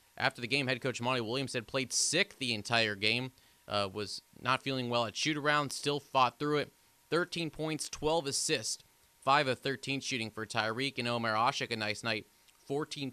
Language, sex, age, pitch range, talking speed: English, male, 30-49, 110-130 Hz, 185 wpm